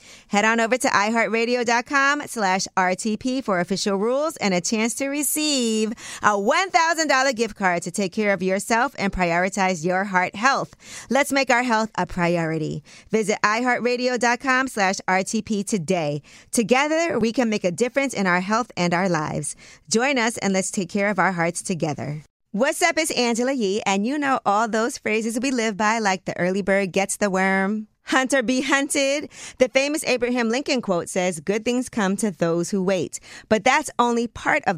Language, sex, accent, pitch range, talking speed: English, female, American, 190-250 Hz, 180 wpm